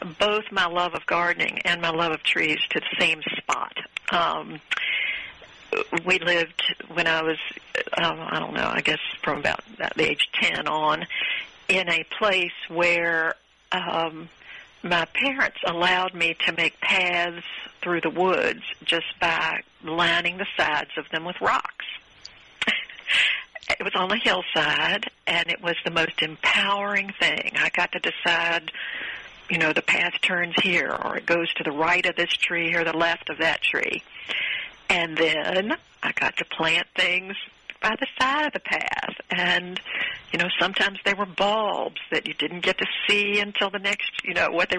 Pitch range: 170-205 Hz